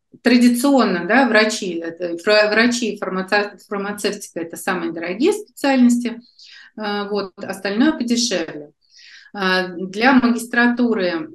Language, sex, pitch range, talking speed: Russian, female, 185-235 Hz, 80 wpm